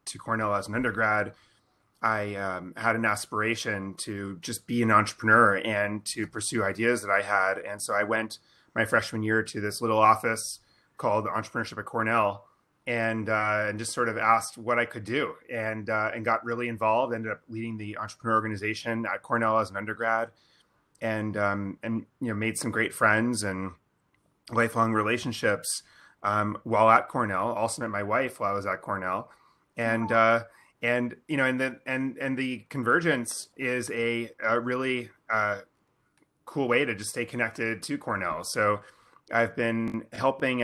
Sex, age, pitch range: male, 30-49, 105-120 Hz